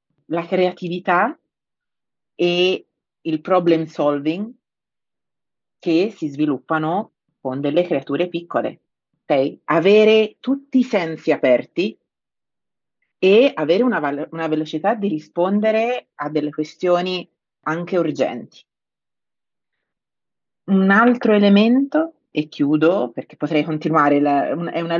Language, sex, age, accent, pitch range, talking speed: Italian, female, 40-59, native, 150-180 Hz, 95 wpm